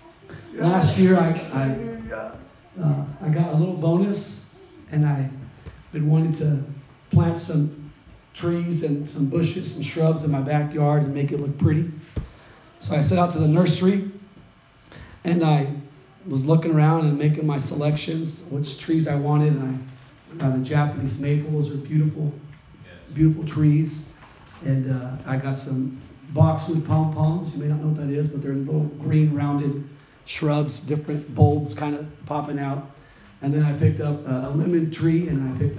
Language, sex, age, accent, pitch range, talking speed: English, male, 40-59, American, 140-160 Hz, 165 wpm